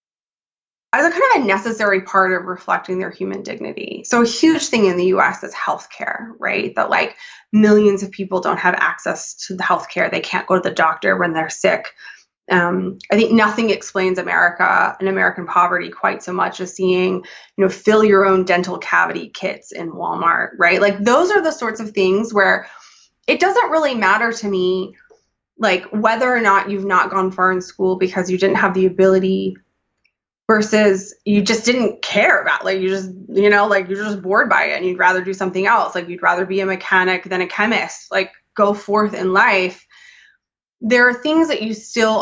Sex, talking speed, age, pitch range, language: female, 200 wpm, 20-39, 185-215 Hz, English